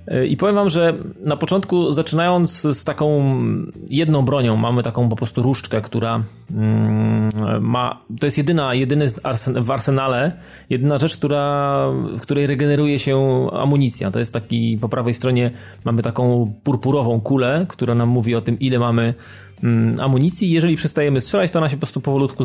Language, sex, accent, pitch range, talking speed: Polish, male, native, 115-145 Hz, 150 wpm